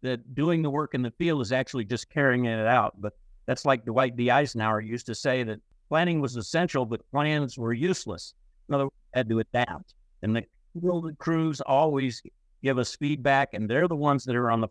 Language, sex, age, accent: English, male, 50-69, American